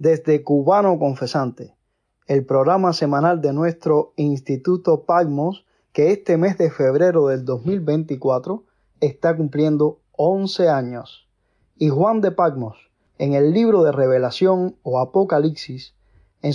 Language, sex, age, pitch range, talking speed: English, male, 30-49, 135-175 Hz, 120 wpm